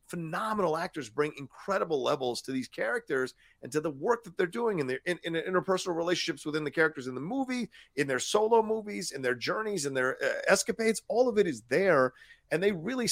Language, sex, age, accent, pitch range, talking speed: English, male, 40-59, American, 140-210 Hz, 210 wpm